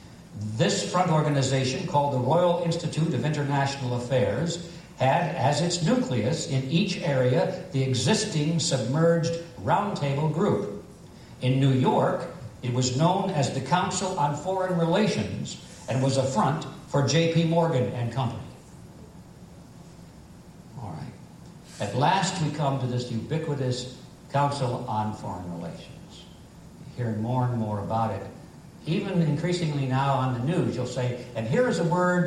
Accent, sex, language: American, male, English